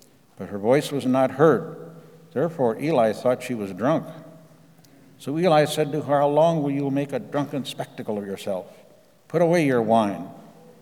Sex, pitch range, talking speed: male, 120-150 Hz, 170 wpm